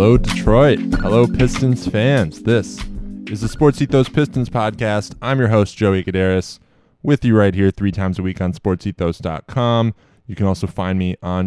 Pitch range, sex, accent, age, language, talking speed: 100-125 Hz, male, American, 20-39, English, 175 wpm